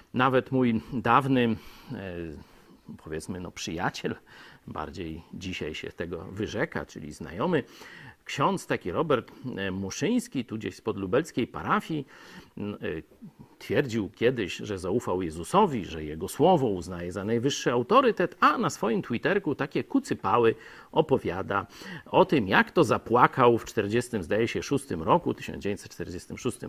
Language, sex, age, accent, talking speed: Polish, male, 50-69, native, 115 wpm